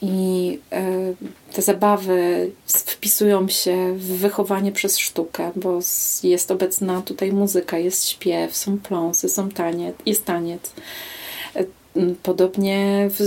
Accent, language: native, Polish